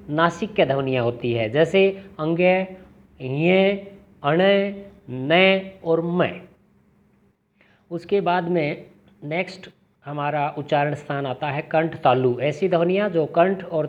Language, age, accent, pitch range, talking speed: Hindi, 50-69, native, 150-185 Hz, 120 wpm